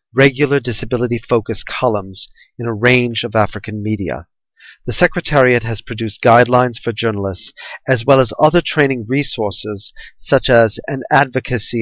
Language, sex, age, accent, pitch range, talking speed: English, male, 40-59, American, 110-130 Hz, 130 wpm